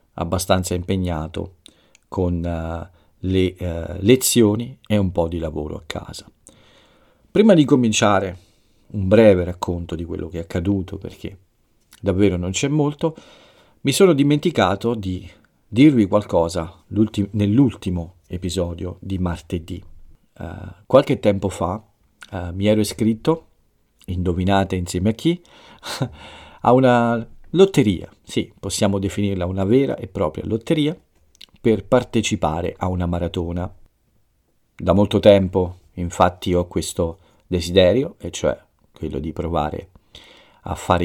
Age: 50-69